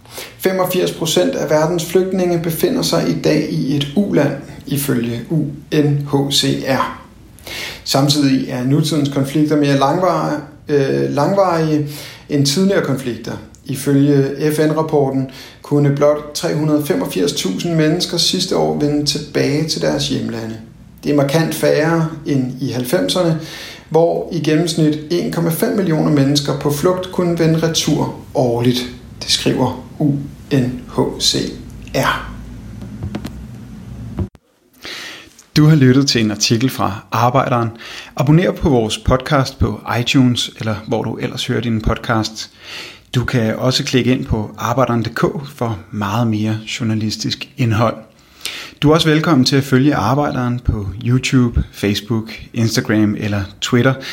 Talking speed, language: 115 wpm, Danish